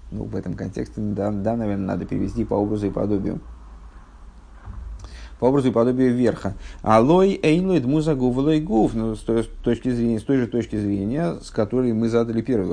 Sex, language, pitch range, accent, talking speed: male, Russian, 85-125 Hz, native, 175 wpm